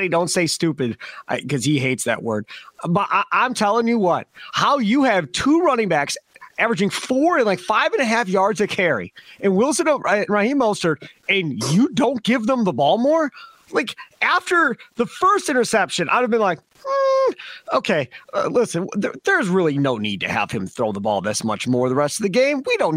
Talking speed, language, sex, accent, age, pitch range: 195 wpm, English, male, American, 30-49, 185-280 Hz